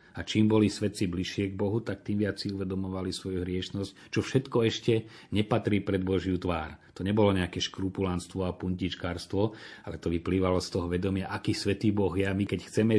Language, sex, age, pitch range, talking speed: Slovak, male, 30-49, 90-105 Hz, 190 wpm